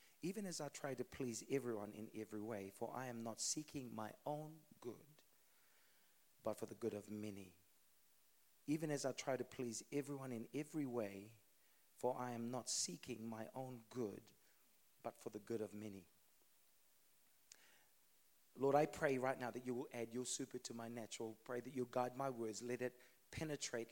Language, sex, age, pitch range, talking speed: English, male, 40-59, 115-150 Hz, 180 wpm